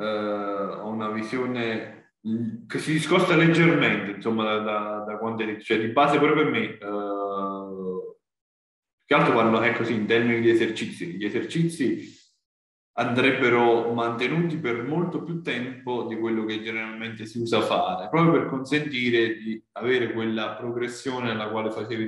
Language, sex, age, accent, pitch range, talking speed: Italian, male, 20-39, native, 105-130 Hz, 145 wpm